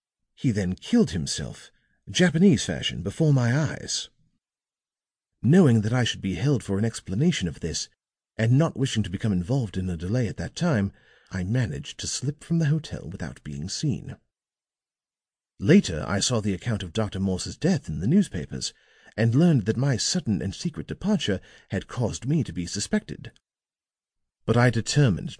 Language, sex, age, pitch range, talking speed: English, male, 50-69, 90-140 Hz, 170 wpm